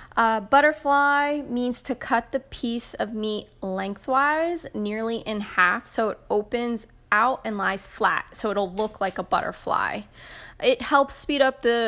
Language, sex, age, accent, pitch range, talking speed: English, female, 10-29, American, 205-250 Hz, 155 wpm